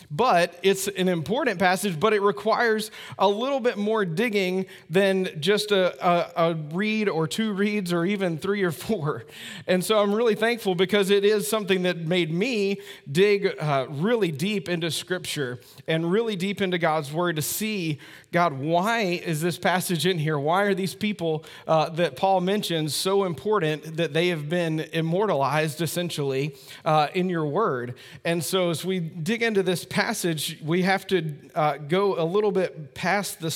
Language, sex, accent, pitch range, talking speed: English, male, American, 165-205 Hz, 175 wpm